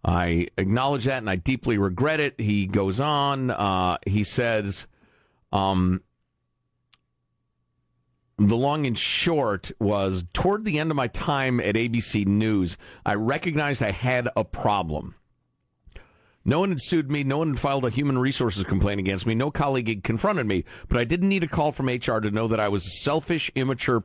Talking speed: 175 wpm